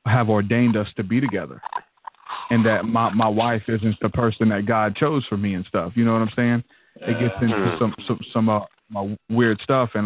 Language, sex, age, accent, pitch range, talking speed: English, male, 30-49, American, 110-130 Hz, 220 wpm